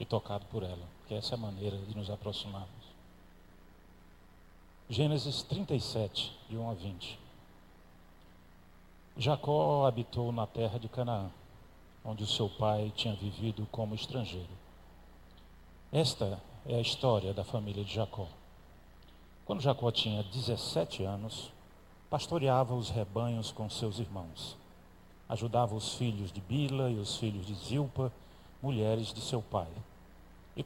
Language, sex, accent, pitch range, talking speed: Portuguese, male, Brazilian, 95-120 Hz, 130 wpm